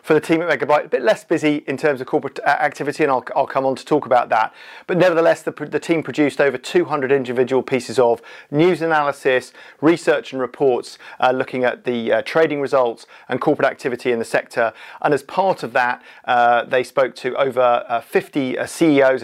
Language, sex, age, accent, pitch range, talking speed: English, male, 40-59, British, 130-150 Hz, 205 wpm